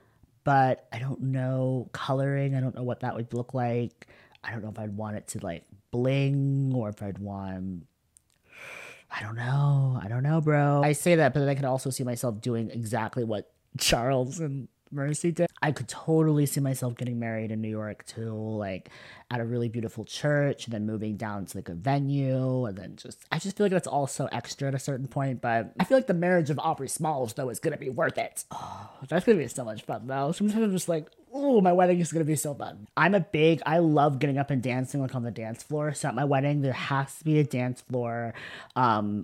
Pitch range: 115-155 Hz